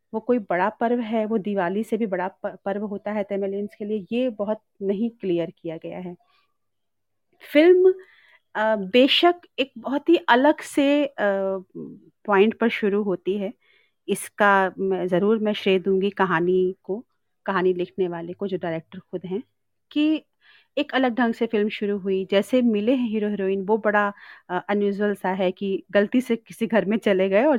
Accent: native